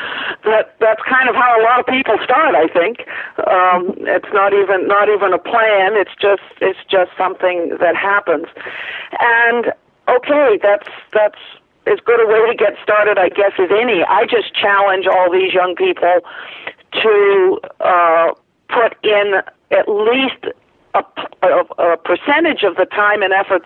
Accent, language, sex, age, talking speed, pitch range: American, English, female, 50-69, 160 wpm, 170-215 Hz